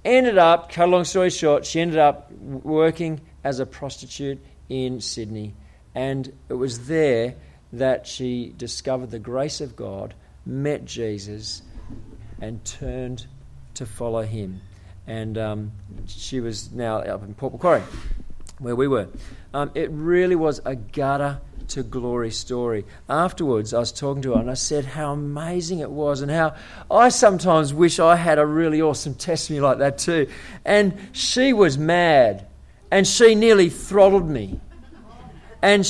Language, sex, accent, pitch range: English, male, Australian, 110-180 Hz